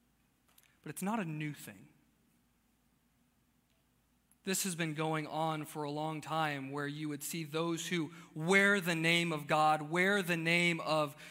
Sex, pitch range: male, 135-160 Hz